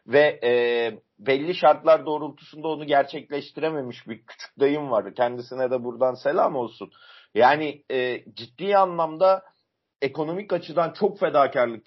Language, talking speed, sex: Turkish, 120 wpm, male